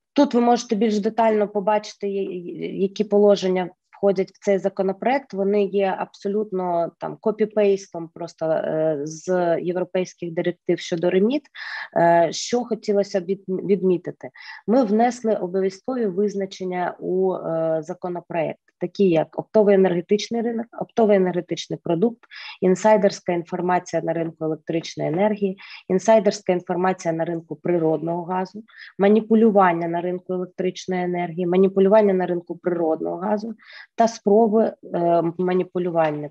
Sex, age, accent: female, 20-39, native